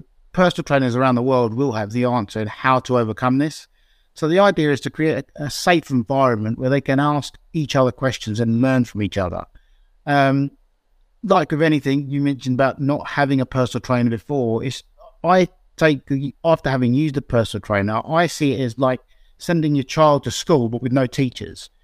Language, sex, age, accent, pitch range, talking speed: English, male, 50-69, British, 120-145 Hz, 190 wpm